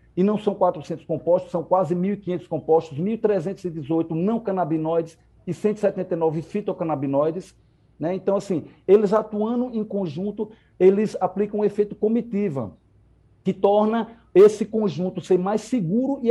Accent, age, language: Brazilian, 60-79, Portuguese